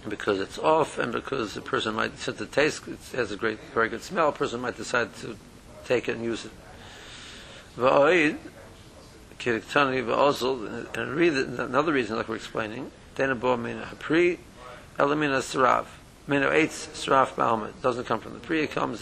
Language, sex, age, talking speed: English, male, 60-79, 135 wpm